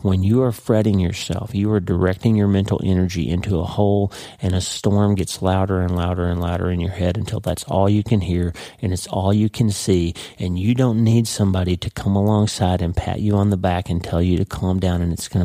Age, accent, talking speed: 40-59, American, 235 wpm